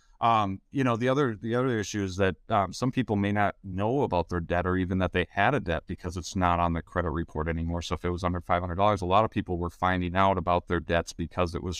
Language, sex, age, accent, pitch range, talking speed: English, male, 30-49, American, 90-110 Hz, 270 wpm